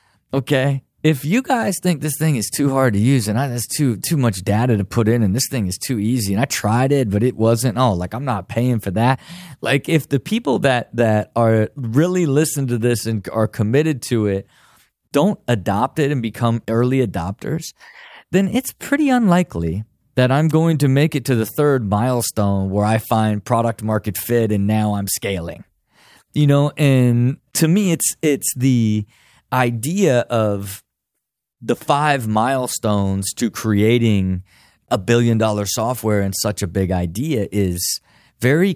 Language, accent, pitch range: English, American, 105-145 Hz